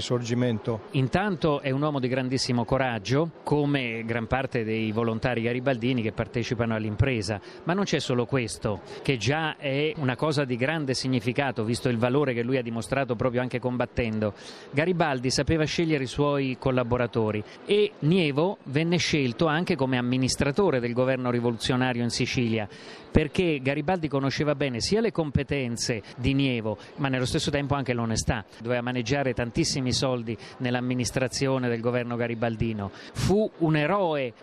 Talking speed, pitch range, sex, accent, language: 145 wpm, 125-155 Hz, male, native, Italian